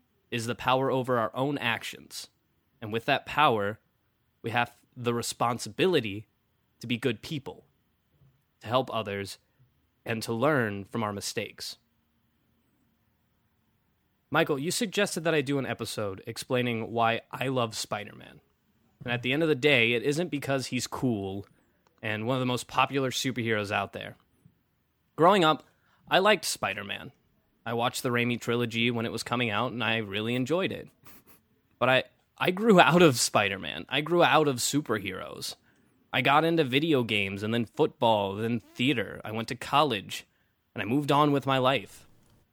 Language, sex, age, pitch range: English, male, 20-39, 115-140 Hz